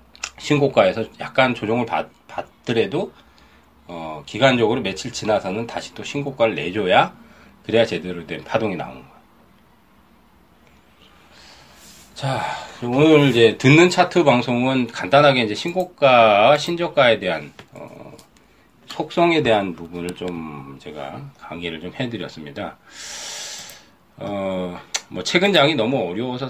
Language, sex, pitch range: Korean, male, 90-140 Hz